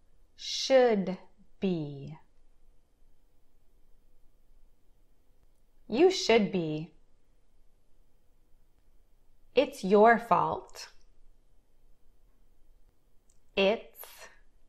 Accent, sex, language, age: American, female, Chinese, 20-39